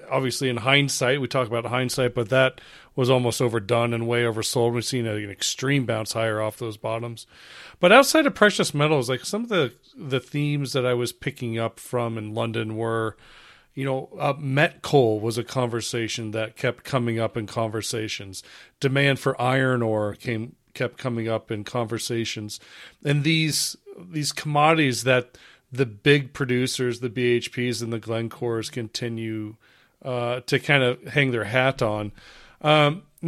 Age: 40-59